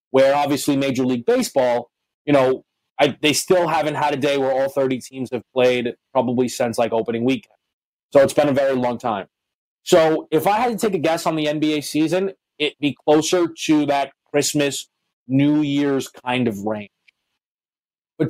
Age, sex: 30-49, male